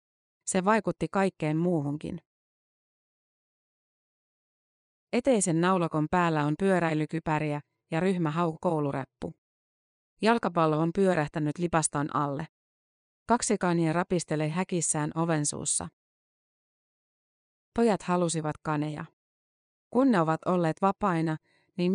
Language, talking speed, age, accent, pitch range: Finnish, 85 wpm, 30-49, native, 155-185 Hz